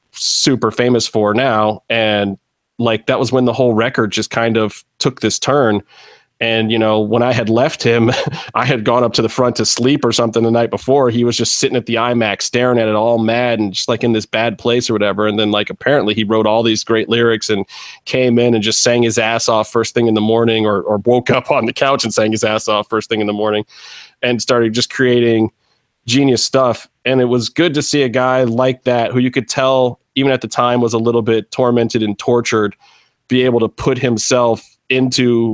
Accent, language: American, English